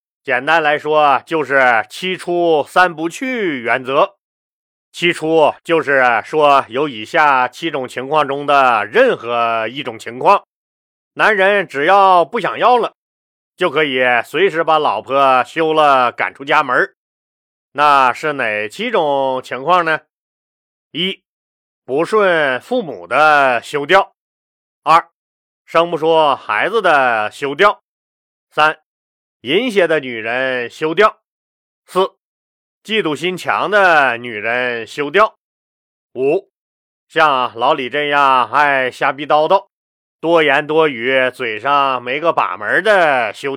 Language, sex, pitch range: Chinese, male, 120-165 Hz